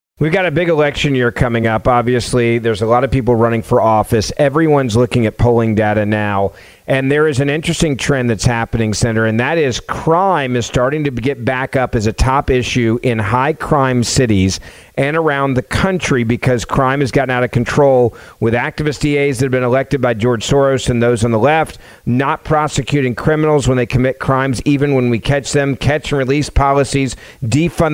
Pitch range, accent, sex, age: 125-160 Hz, American, male, 40-59